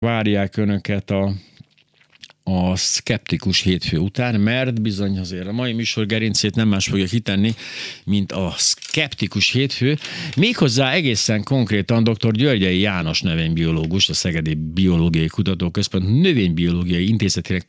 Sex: male